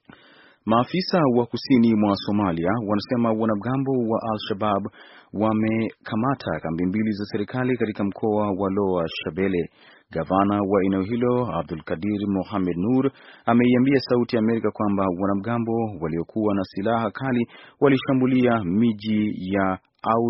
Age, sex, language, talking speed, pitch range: 30-49, male, Swahili, 115 wpm, 95-115 Hz